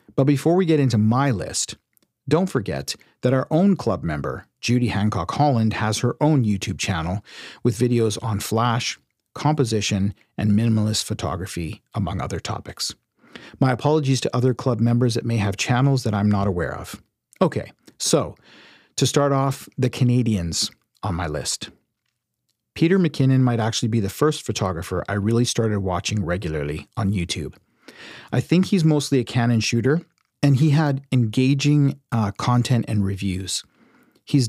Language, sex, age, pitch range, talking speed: English, male, 40-59, 105-135 Hz, 155 wpm